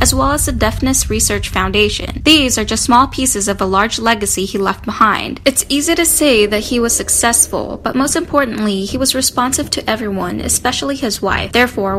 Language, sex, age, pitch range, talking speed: English, female, 10-29, 195-255 Hz, 195 wpm